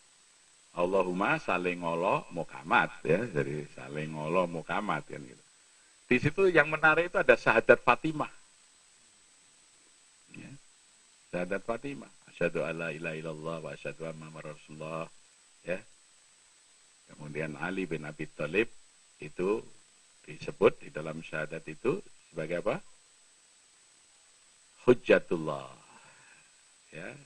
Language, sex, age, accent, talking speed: Indonesian, male, 50-69, native, 100 wpm